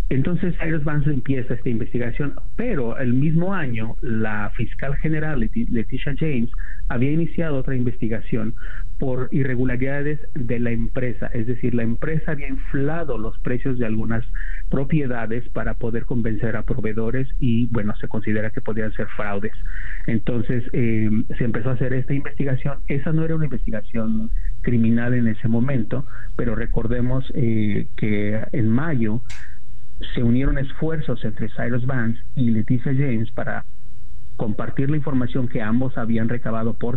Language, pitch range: Spanish, 115-135 Hz